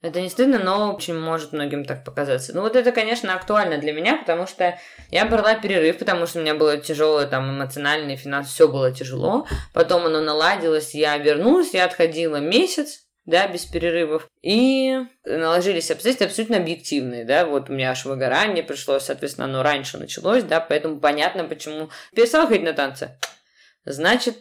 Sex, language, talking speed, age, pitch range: female, Russian, 170 wpm, 20-39, 150-185 Hz